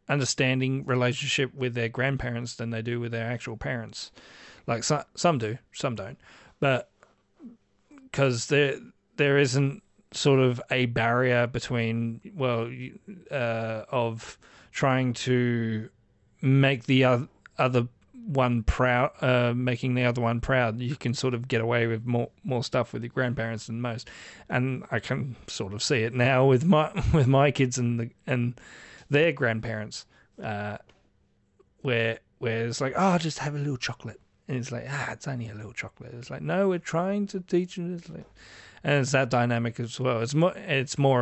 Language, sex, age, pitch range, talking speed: English, male, 40-59, 115-135 Hz, 170 wpm